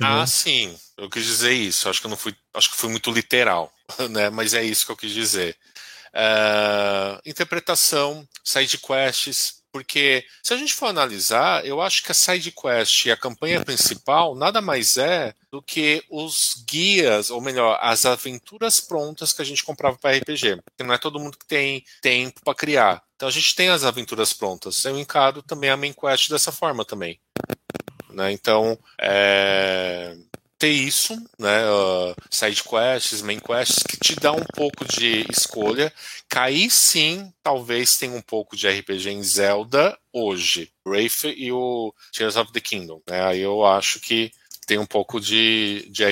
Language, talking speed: Portuguese, 170 wpm